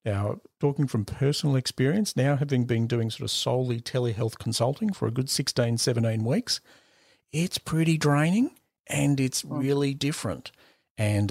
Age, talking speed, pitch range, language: 40-59, 150 wpm, 105-130 Hz, English